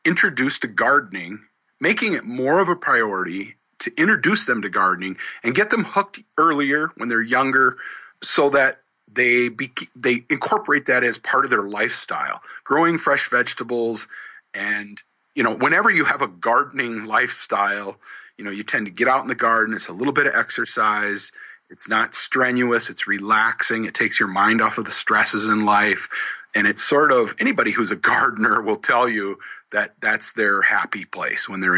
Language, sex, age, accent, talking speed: English, male, 40-59, American, 180 wpm